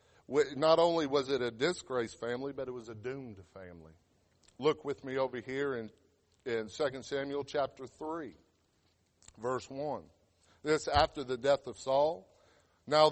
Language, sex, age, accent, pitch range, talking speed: English, male, 50-69, American, 110-155 Hz, 150 wpm